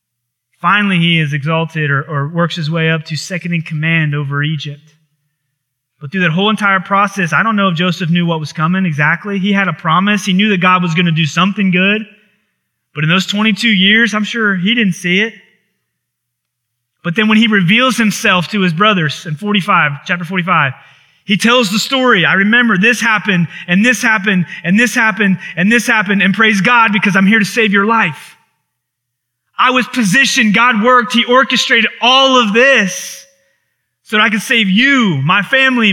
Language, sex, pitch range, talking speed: English, male, 160-230 Hz, 190 wpm